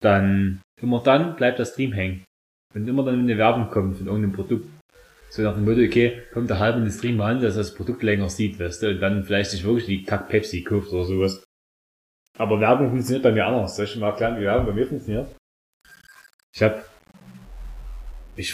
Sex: male